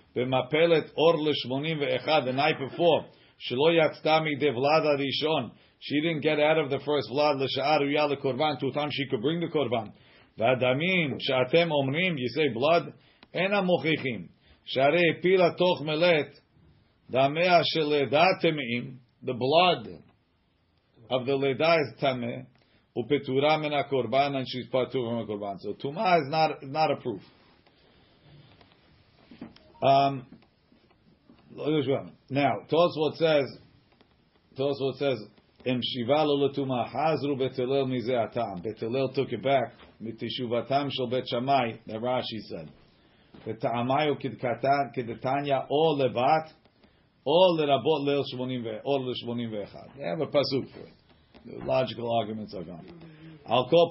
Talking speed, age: 100 wpm, 40-59